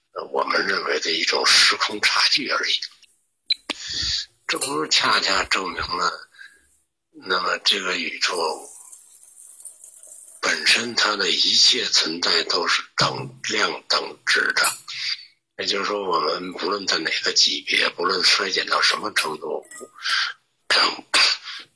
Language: Chinese